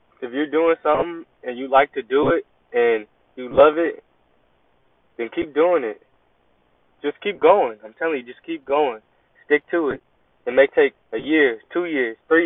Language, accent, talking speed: English, American, 185 wpm